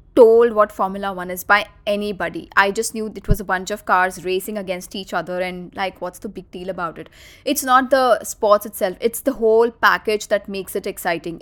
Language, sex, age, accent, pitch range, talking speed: English, female, 20-39, Indian, 195-250 Hz, 215 wpm